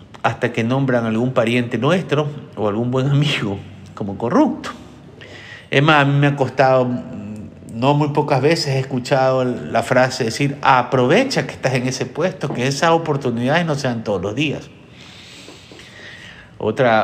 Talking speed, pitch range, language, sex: 150 wpm, 115-150 Hz, Spanish, male